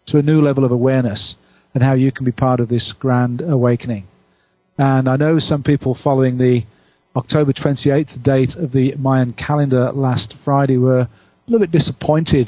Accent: British